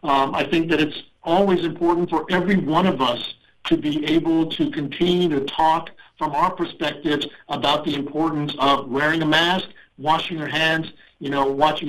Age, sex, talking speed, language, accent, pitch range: 60-79, male, 175 wpm, English, American, 150-180 Hz